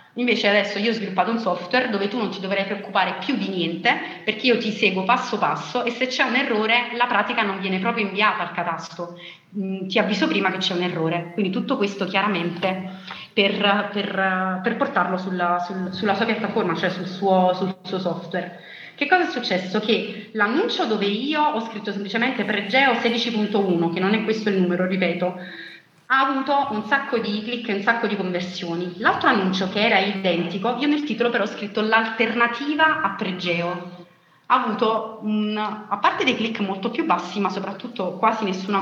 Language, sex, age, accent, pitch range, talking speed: Italian, female, 30-49, native, 185-230 Hz, 185 wpm